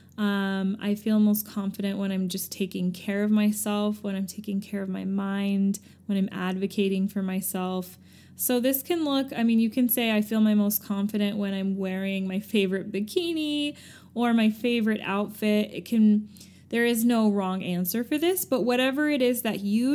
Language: English